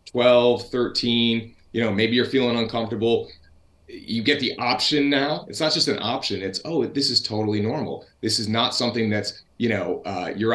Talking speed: 190 wpm